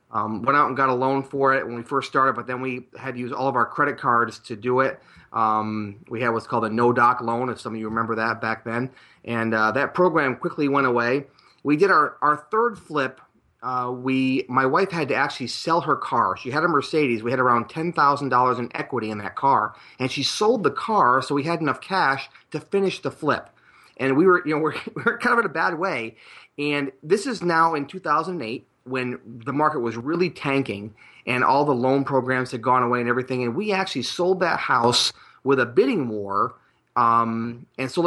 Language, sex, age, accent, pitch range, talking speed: English, male, 30-49, American, 120-155 Hz, 225 wpm